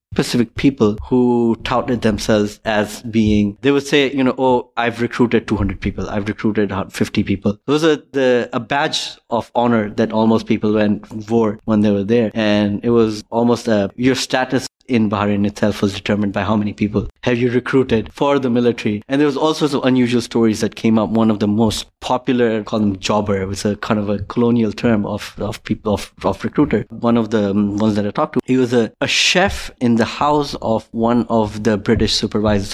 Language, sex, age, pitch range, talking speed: English, male, 20-39, 105-120 Hz, 215 wpm